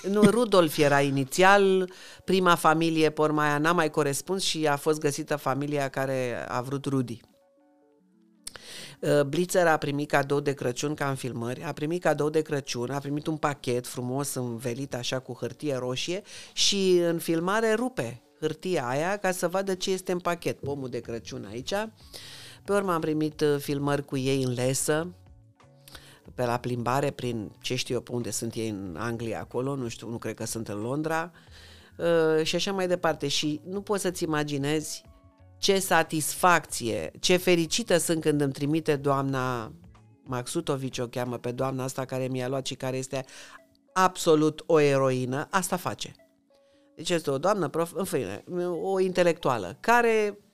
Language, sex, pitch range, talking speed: Romanian, female, 130-175 Hz, 160 wpm